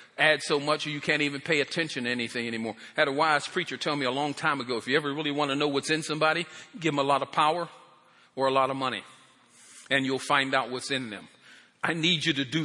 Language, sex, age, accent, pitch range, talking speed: English, male, 50-69, American, 145-195 Hz, 255 wpm